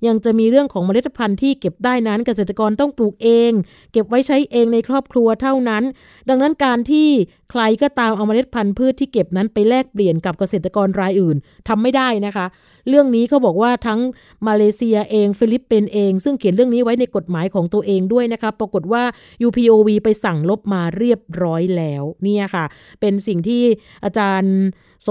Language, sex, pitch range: Thai, female, 185-235 Hz